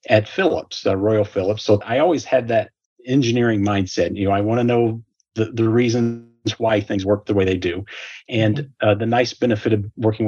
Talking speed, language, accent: 205 wpm, English, American